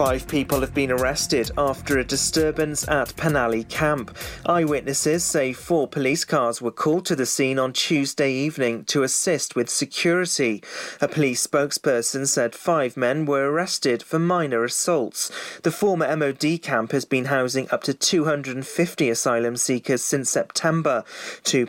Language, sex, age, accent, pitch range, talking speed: English, male, 30-49, British, 125-155 Hz, 150 wpm